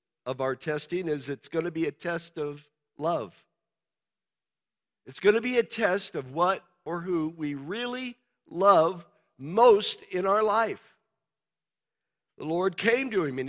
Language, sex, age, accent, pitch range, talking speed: English, male, 50-69, American, 190-265 Hz, 155 wpm